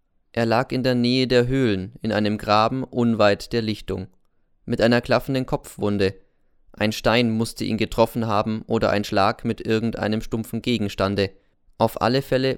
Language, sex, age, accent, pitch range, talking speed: German, male, 20-39, German, 100-120 Hz, 155 wpm